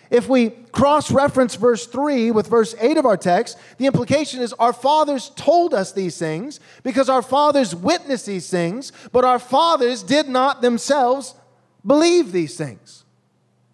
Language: English